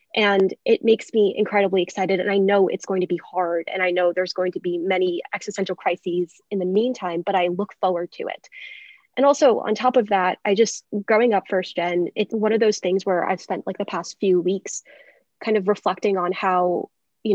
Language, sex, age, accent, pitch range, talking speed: English, female, 20-39, American, 180-210 Hz, 220 wpm